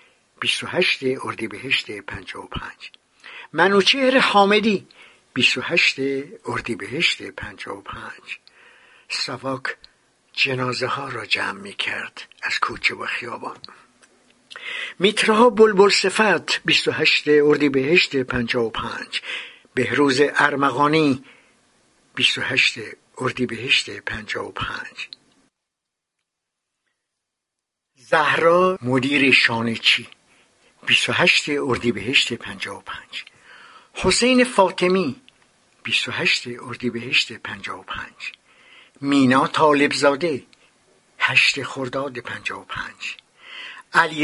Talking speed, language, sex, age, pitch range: 90 wpm, Persian, male, 60-79, 130-190 Hz